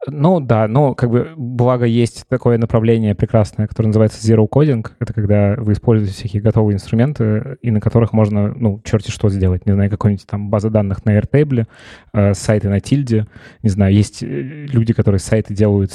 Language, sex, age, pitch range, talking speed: Russian, male, 20-39, 105-115 Hz, 175 wpm